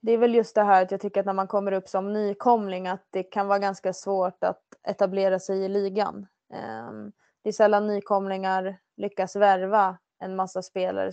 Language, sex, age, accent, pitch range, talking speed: Swedish, female, 20-39, Norwegian, 180-200 Hz, 200 wpm